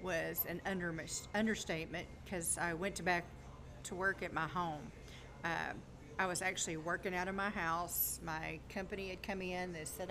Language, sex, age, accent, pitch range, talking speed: English, female, 50-69, American, 165-190 Hz, 165 wpm